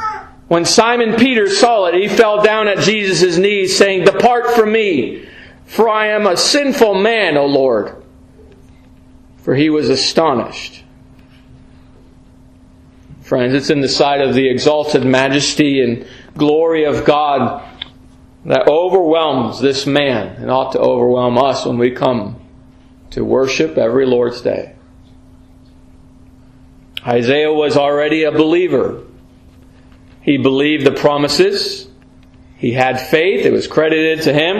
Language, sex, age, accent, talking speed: English, male, 40-59, American, 130 wpm